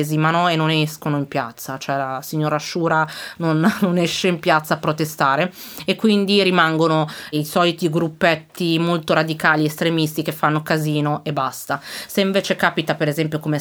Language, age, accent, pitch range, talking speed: Italian, 30-49, native, 150-170 Hz, 165 wpm